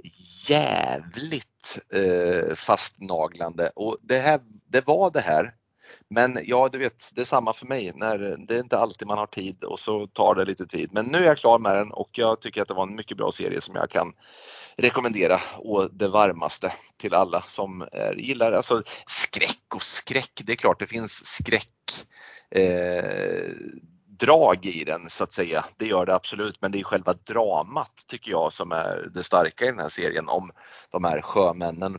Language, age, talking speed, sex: Swedish, 30-49, 195 wpm, male